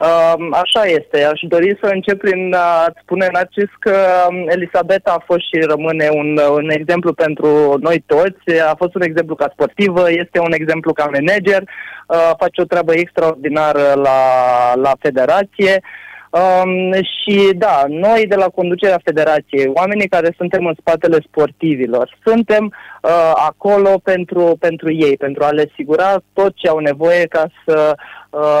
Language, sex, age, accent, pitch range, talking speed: Romanian, male, 20-39, native, 155-190 Hz, 150 wpm